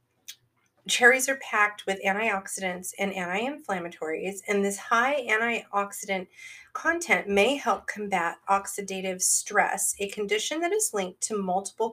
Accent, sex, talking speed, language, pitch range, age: American, female, 120 wpm, English, 185-235 Hz, 30-49